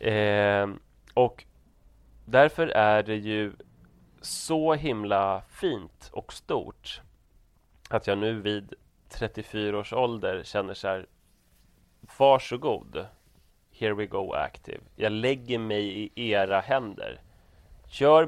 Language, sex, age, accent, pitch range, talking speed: English, male, 30-49, Swedish, 100-115 Hz, 110 wpm